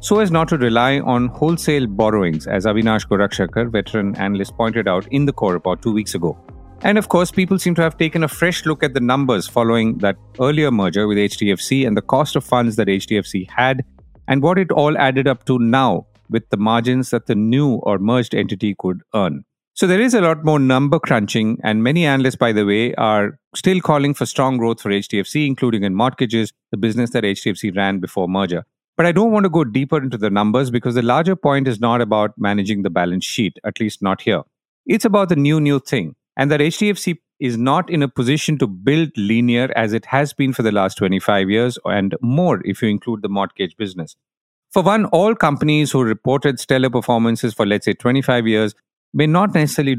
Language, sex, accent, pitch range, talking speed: English, male, Indian, 105-145 Hz, 210 wpm